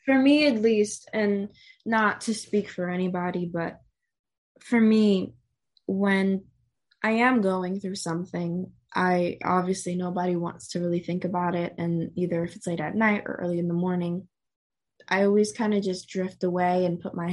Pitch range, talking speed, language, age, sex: 175-205 Hz, 175 wpm, English, 20-39, female